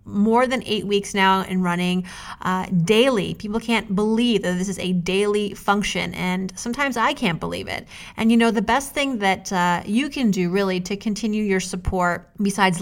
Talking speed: 190 wpm